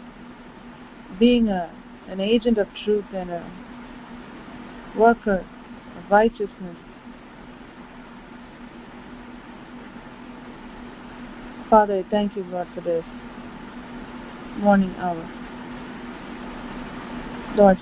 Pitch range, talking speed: 190-235 Hz, 70 wpm